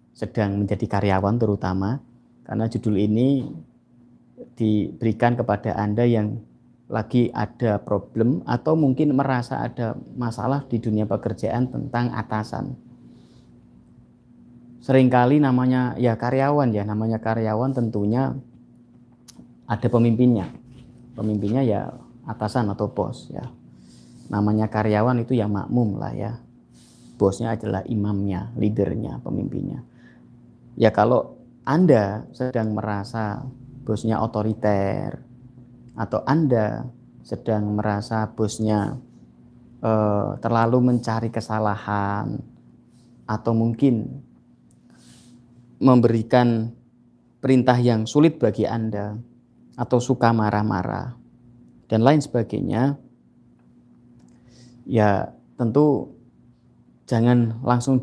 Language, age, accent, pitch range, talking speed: Indonesian, 30-49, native, 105-120 Hz, 90 wpm